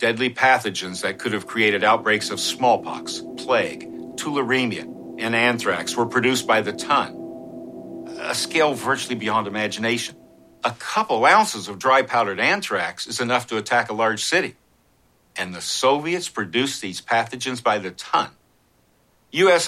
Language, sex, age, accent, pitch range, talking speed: English, male, 60-79, American, 105-125 Hz, 140 wpm